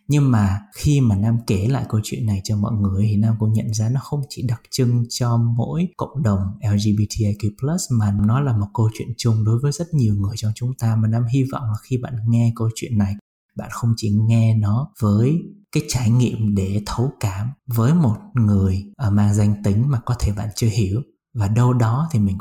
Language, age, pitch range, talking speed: Vietnamese, 20-39, 105-125 Hz, 225 wpm